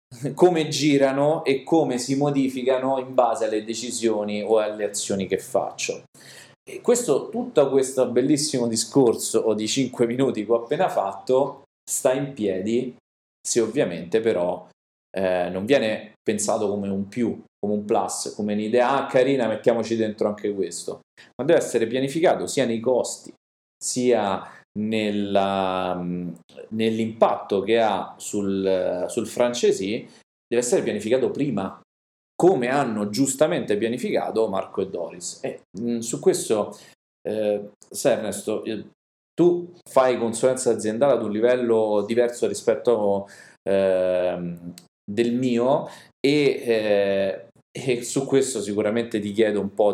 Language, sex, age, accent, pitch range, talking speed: Italian, male, 30-49, native, 105-130 Hz, 125 wpm